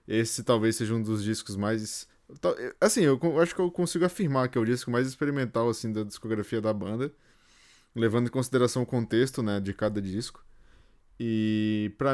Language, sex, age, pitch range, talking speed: Portuguese, male, 20-39, 105-130 Hz, 180 wpm